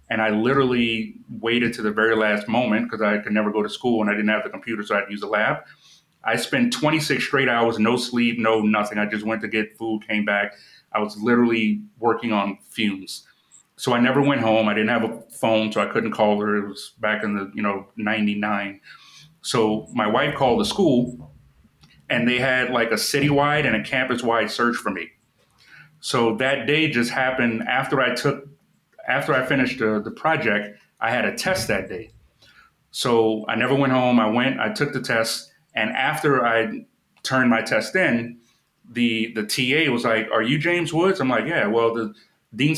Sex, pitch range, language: male, 105-125 Hz, English